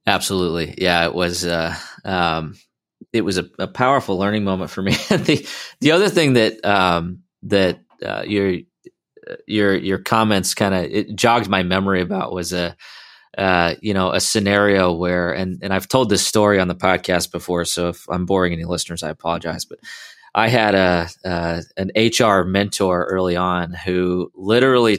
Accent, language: American, English